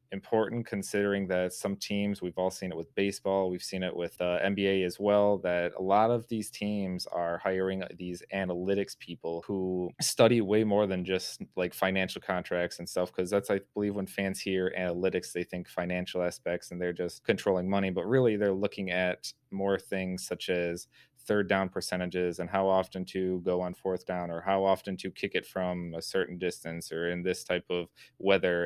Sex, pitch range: male, 90-100 Hz